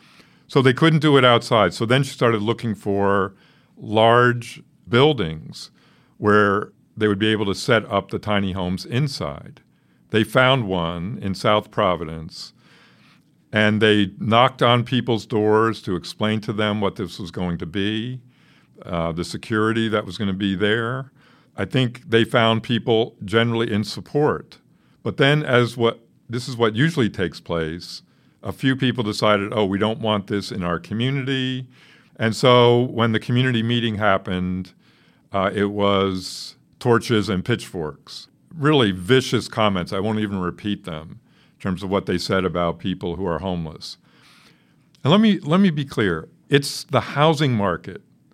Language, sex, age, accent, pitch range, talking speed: English, male, 50-69, American, 100-130 Hz, 160 wpm